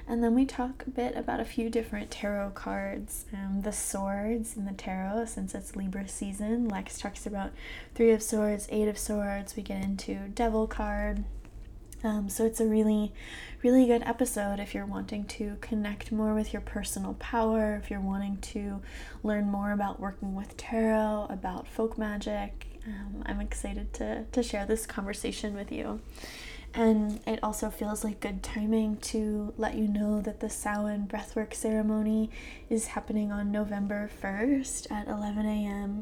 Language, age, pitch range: English, 20-39, 205-225 Hz